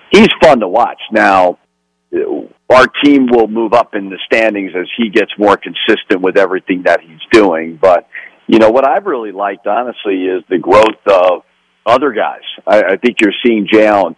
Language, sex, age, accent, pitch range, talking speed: English, male, 50-69, American, 95-110 Hz, 185 wpm